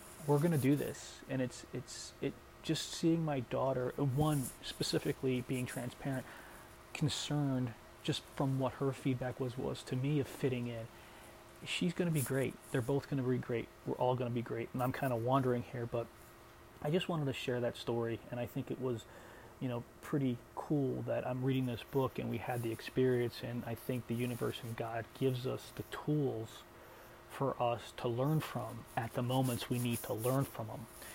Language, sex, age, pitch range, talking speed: English, male, 30-49, 120-135 Hz, 195 wpm